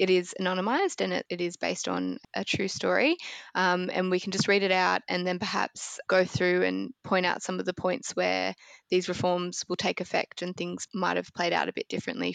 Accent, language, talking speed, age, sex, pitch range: Australian, English, 225 wpm, 10-29, female, 180-200 Hz